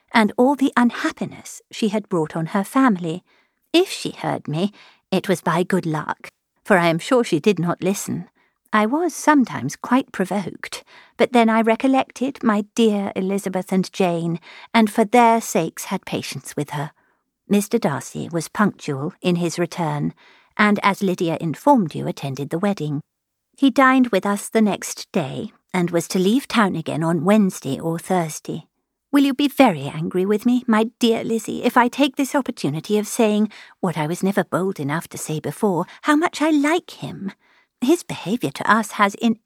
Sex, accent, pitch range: female, British, 175-245 Hz